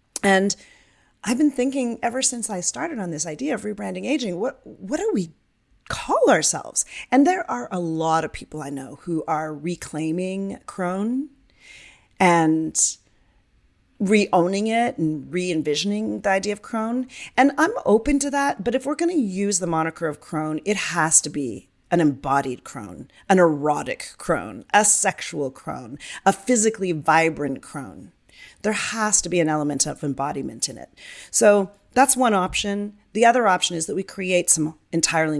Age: 40-59